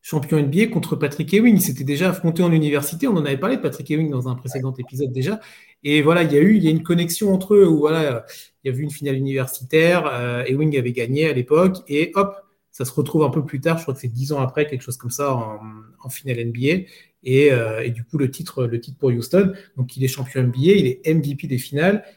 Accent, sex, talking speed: French, male, 260 wpm